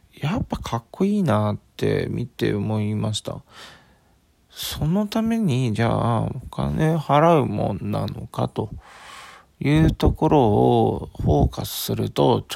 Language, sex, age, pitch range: Japanese, male, 40-59, 105-165 Hz